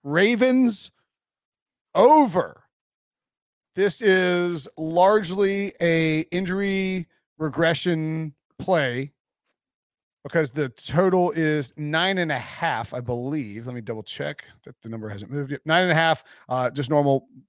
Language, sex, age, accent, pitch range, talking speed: English, male, 40-59, American, 135-175 Hz, 125 wpm